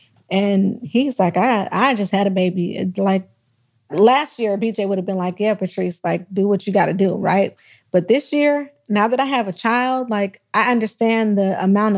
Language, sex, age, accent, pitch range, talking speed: English, female, 30-49, American, 190-235 Hz, 205 wpm